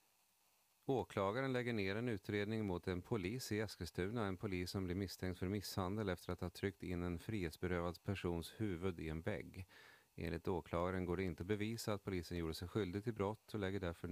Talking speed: 195 wpm